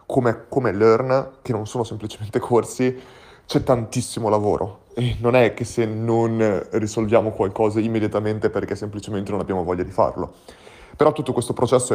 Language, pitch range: Italian, 105-120 Hz